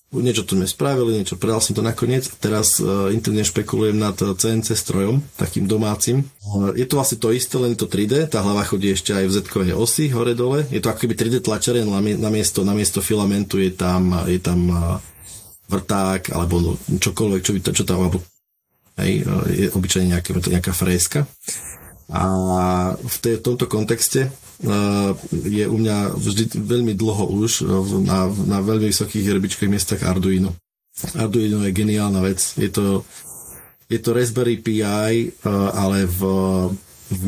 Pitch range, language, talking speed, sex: 95-110 Hz, Slovak, 165 wpm, male